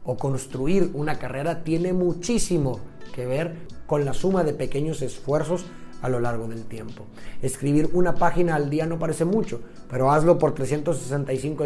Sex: male